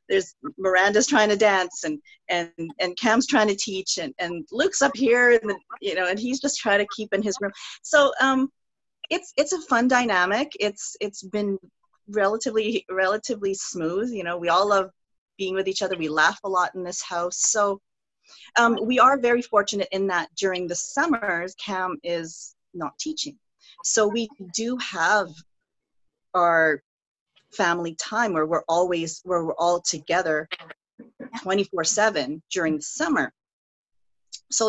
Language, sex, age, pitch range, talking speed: English, female, 40-59, 175-235 Hz, 160 wpm